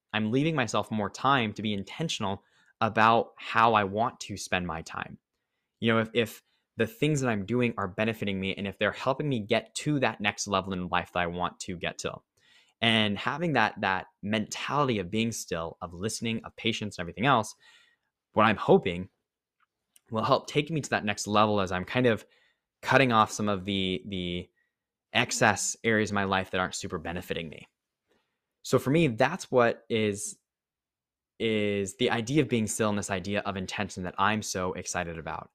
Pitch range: 100-120 Hz